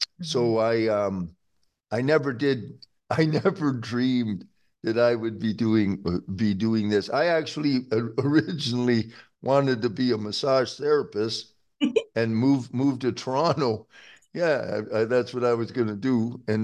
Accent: American